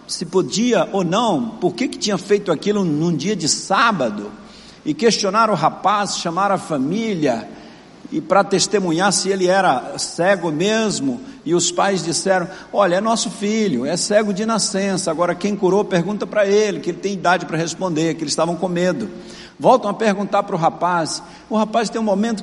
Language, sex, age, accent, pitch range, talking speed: Portuguese, male, 60-79, Brazilian, 170-205 Hz, 180 wpm